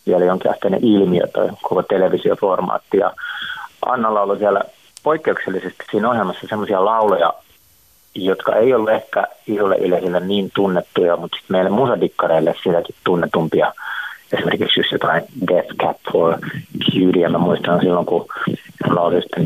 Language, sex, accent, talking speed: Finnish, male, native, 135 wpm